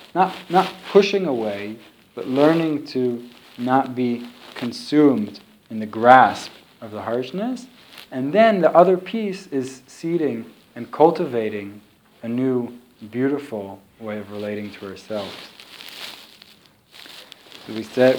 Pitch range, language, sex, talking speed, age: 115-135 Hz, English, male, 120 wpm, 20-39